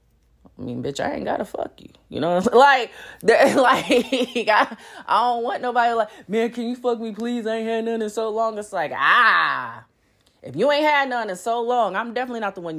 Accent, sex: American, female